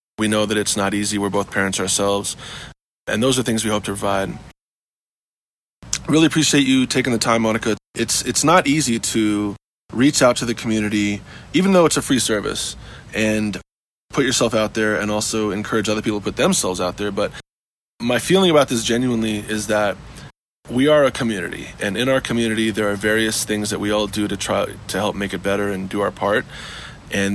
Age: 20-39